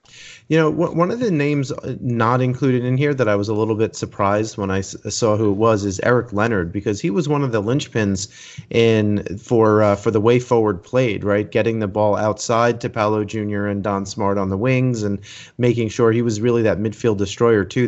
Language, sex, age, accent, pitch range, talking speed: English, male, 30-49, American, 105-135 Hz, 220 wpm